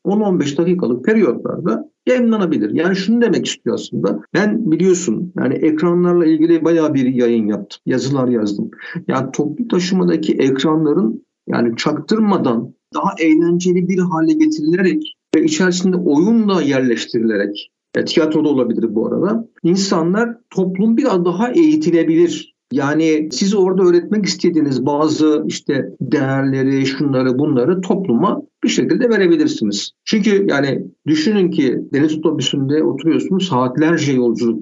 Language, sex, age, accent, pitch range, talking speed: Turkish, male, 60-79, native, 140-195 Hz, 120 wpm